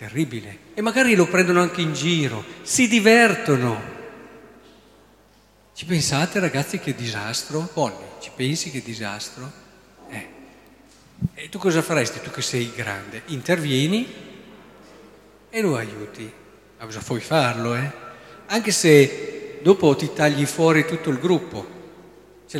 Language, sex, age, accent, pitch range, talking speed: Italian, male, 50-69, native, 120-190 Hz, 125 wpm